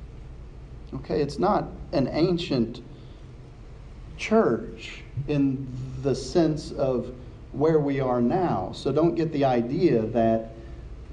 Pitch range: 120-150 Hz